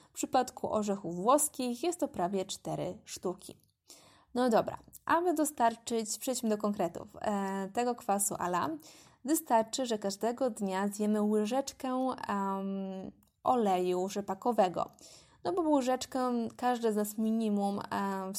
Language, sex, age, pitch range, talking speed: Polish, female, 20-39, 195-245 Hz, 120 wpm